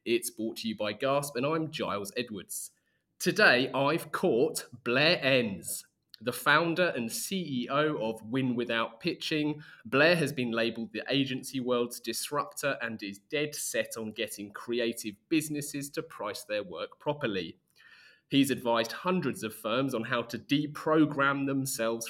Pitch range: 115-150 Hz